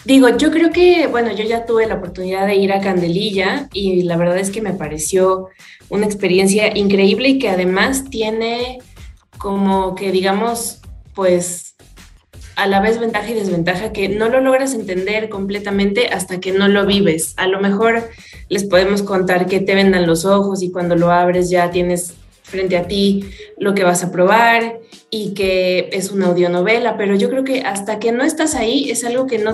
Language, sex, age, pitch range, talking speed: Spanish, female, 20-39, 180-220 Hz, 185 wpm